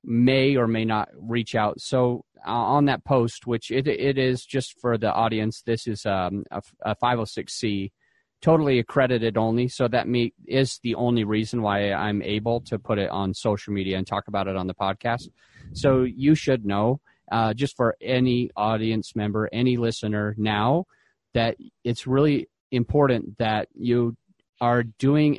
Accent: American